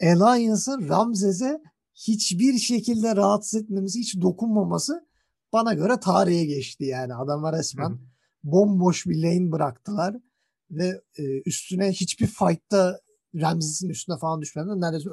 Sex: male